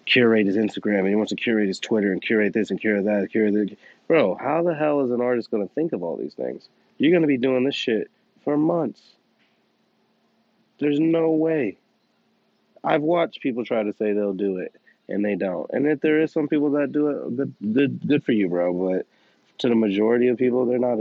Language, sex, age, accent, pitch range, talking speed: English, male, 30-49, American, 95-120 Hz, 225 wpm